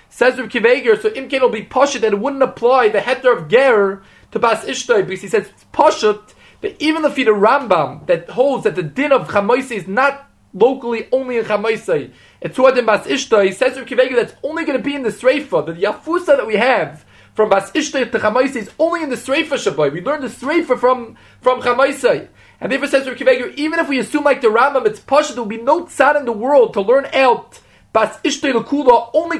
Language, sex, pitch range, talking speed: English, male, 230-295 Hz, 220 wpm